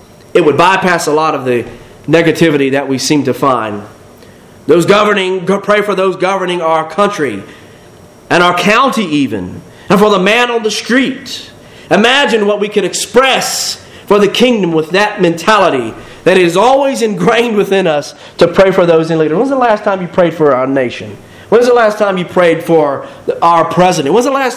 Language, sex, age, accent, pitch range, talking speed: English, male, 40-59, American, 145-200 Hz, 195 wpm